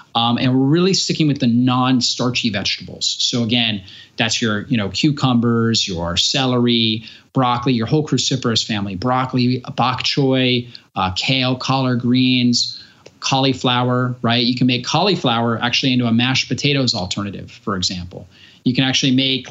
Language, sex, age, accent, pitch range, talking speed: English, male, 30-49, American, 115-140 Hz, 150 wpm